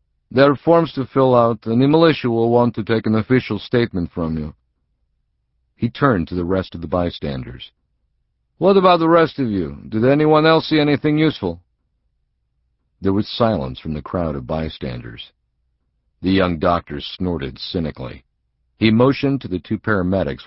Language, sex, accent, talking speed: English, male, American, 165 wpm